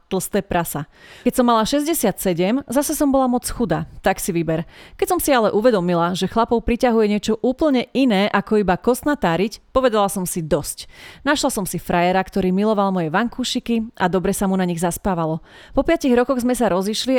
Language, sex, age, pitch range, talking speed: Slovak, female, 30-49, 180-230 Hz, 185 wpm